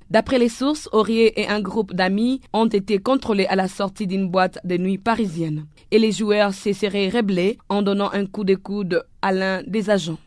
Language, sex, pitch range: French, female, 195-225 Hz